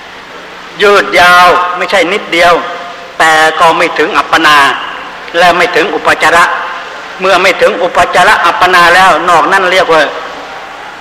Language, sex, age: Thai, male, 60-79